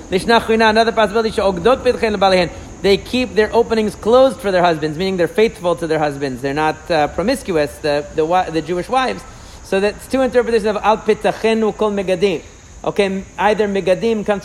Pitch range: 185-230 Hz